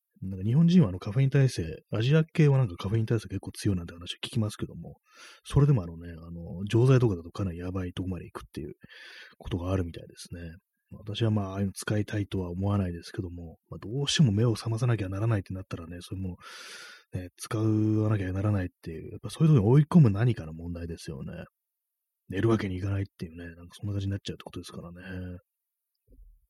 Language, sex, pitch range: Japanese, male, 90-120 Hz